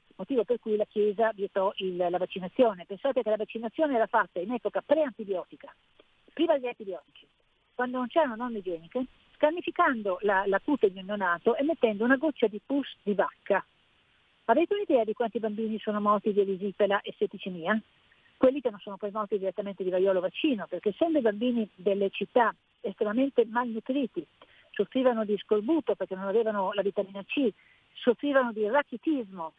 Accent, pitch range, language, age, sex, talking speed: native, 205-255 Hz, Italian, 50-69, female, 165 wpm